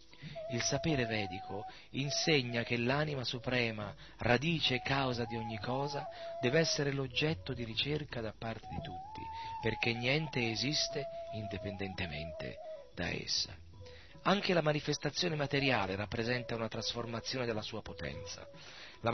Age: 40-59